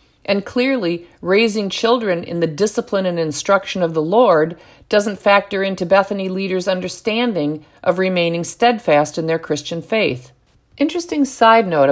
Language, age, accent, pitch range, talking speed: English, 50-69, American, 160-205 Hz, 140 wpm